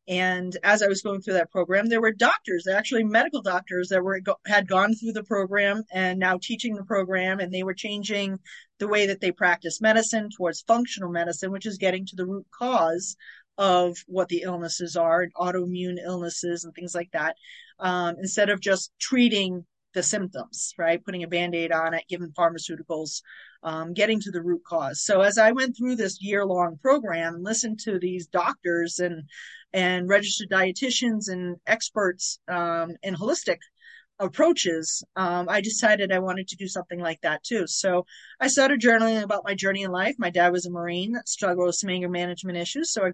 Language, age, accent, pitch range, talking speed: English, 30-49, American, 175-215 Hz, 190 wpm